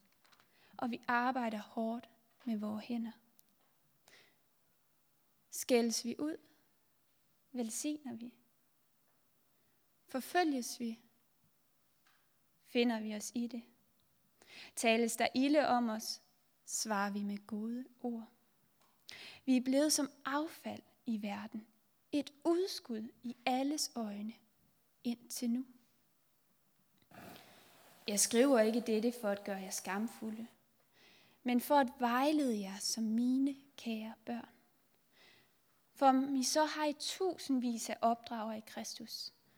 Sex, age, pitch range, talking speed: female, 20-39, 220-260 Hz, 110 wpm